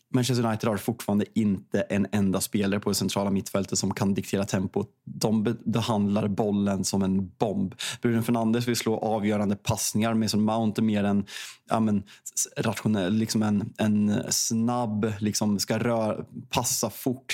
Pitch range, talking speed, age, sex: 100-120 Hz, 160 wpm, 20-39, male